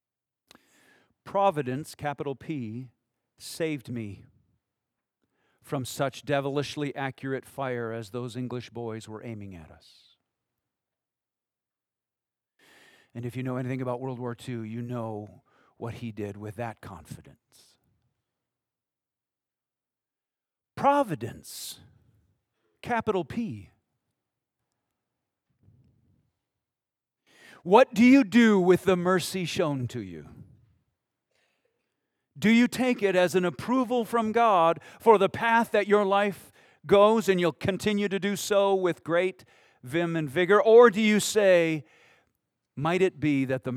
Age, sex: 50-69, male